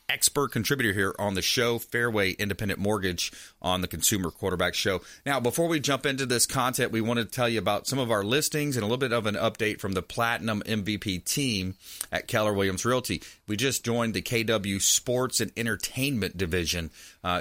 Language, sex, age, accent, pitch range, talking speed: English, male, 40-59, American, 100-120 Hz, 195 wpm